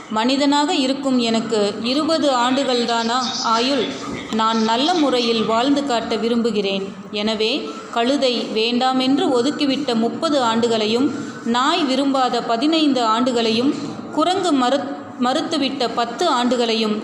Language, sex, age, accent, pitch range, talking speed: Tamil, female, 30-49, native, 225-270 Hz, 95 wpm